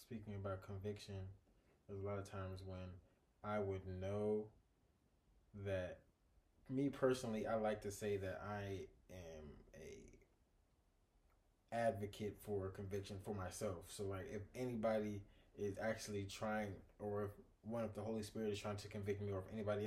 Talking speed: 150 wpm